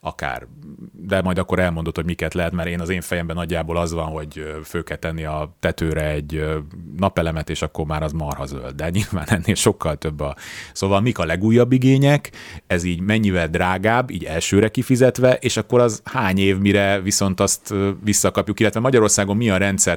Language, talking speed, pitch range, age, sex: Hungarian, 185 wpm, 85-110 Hz, 30-49, male